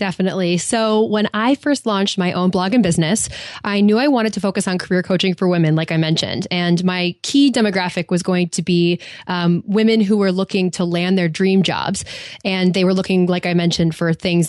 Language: English